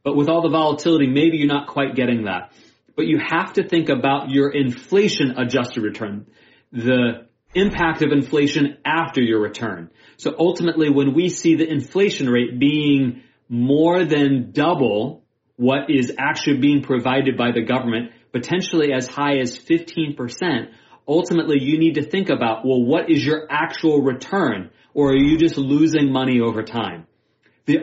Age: 30-49